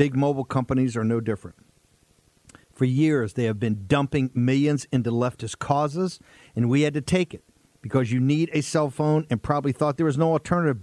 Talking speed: 195 wpm